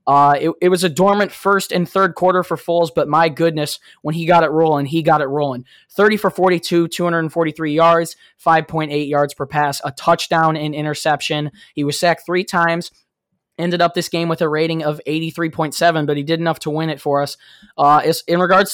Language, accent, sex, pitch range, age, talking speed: English, American, male, 150-170 Hz, 20-39, 200 wpm